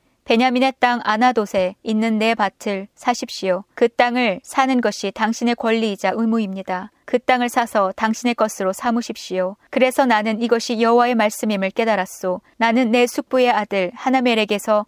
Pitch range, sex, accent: 200-245 Hz, female, native